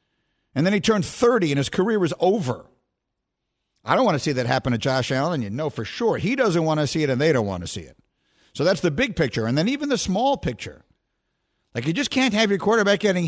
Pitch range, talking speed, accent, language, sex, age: 120-170 Hz, 255 wpm, American, English, male, 50-69